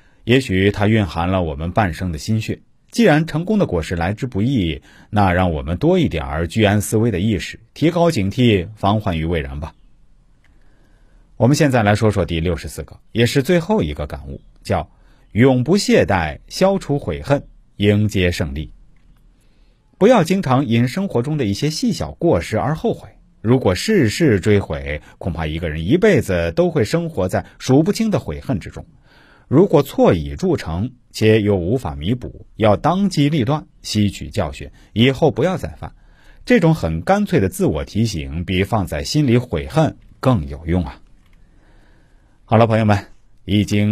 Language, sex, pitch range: Chinese, male, 85-135 Hz